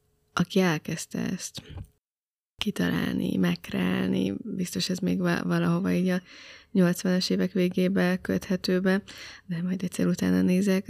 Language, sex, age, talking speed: Hungarian, female, 20-39, 110 wpm